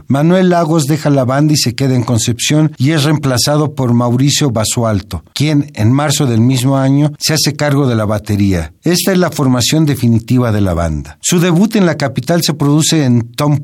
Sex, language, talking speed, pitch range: male, Spanish, 200 wpm, 120-155 Hz